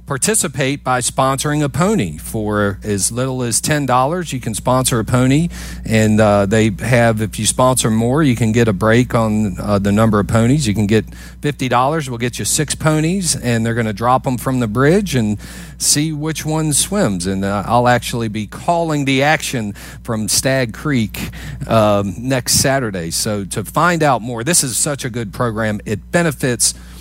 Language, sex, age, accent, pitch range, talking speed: English, male, 40-59, American, 100-130 Hz, 190 wpm